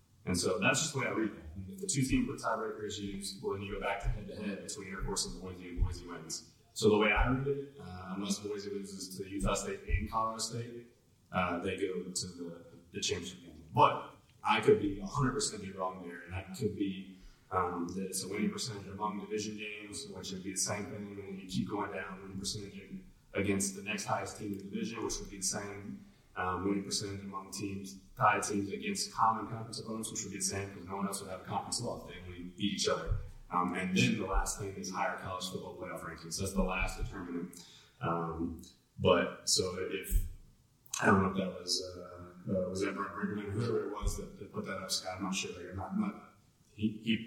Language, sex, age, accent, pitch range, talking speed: English, male, 30-49, American, 95-105 Hz, 230 wpm